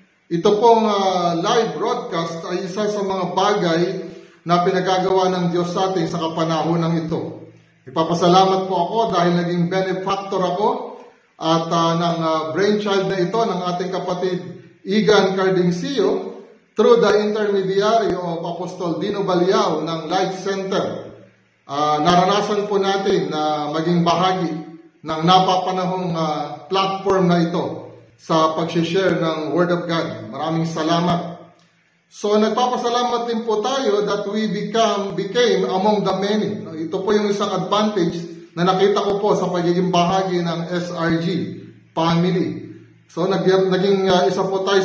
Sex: male